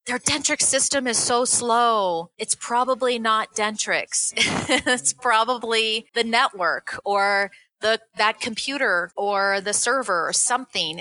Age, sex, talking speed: 30-49, female, 125 wpm